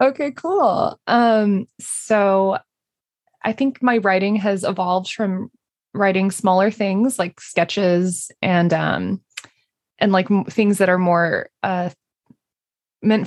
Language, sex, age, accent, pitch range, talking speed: English, female, 20-39, American, 180-215 Hz, 120 wpm